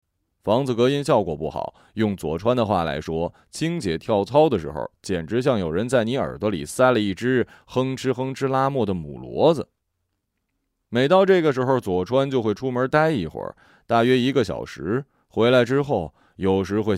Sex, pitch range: male, 90-135 Hz